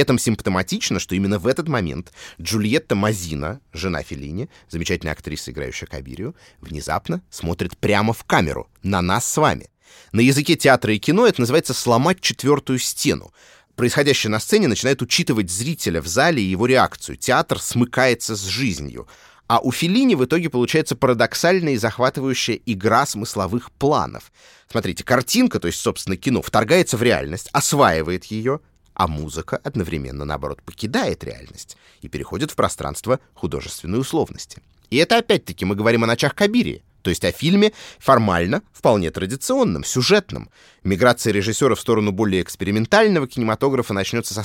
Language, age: Russian, 30-49